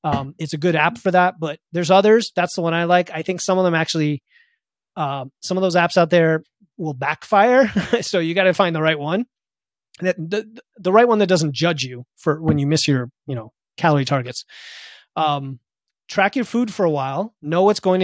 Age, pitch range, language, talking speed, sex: 30-49, 150-190 Hz, English, 220 wpm, male